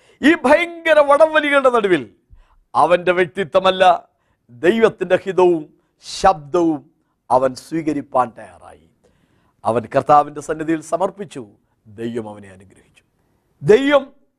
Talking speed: 85 wpm